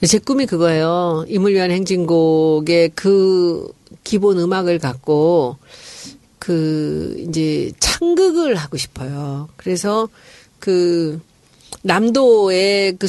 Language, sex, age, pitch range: Korean, female, 40-59, 170-220 Hz